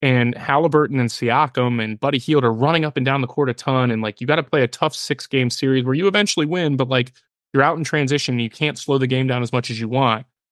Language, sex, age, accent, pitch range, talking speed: English, male, 20-39, American, 120-145 Hz, 275 wpm